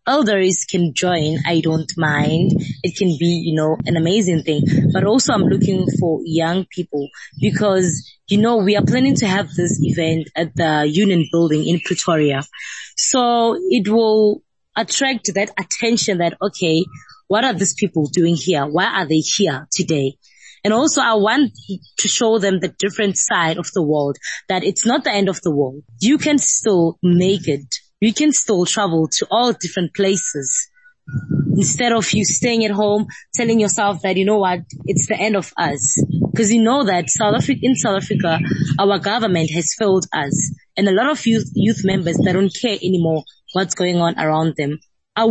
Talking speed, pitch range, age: 185 wpm, 165-210 Hz, 20-39